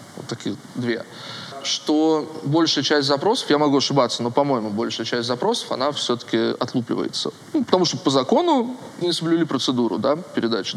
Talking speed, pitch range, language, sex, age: 145 wpm, 130-155 Hz, Russian, male, 20-39